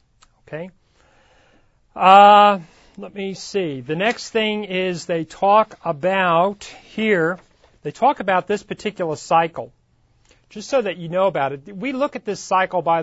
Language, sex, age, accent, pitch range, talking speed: English, male, 40-59, American, 150-185 Hz, 145 wpm